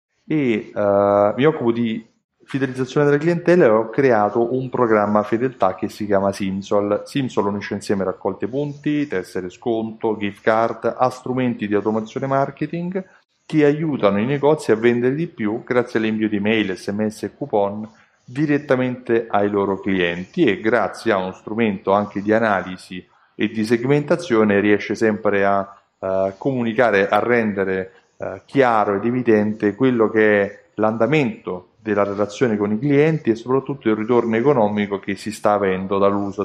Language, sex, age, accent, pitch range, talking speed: Italian, male, 30-49, native, 100-125 Hz, 150 wpm